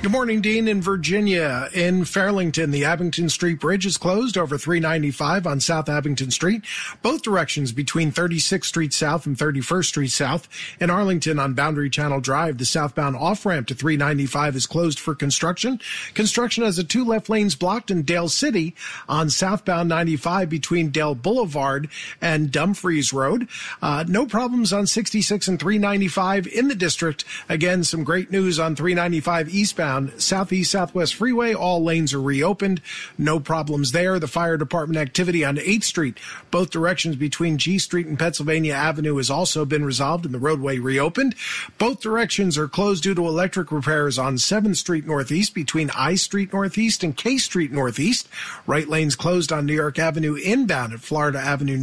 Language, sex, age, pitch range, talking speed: English, male, 40-59, 150-190 Hz, 165 wpm